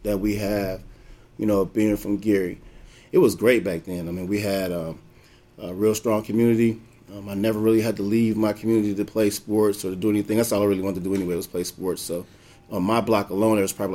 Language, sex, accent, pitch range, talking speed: English, male, American, 95-110 Hz, 250 wpm